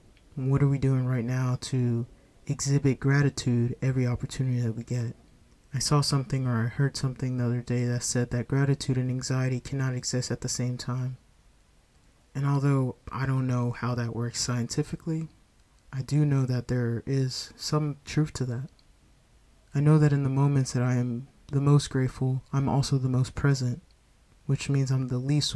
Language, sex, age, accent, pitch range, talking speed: English, male, 20-39, American, 120-140 Hz, 180 wpm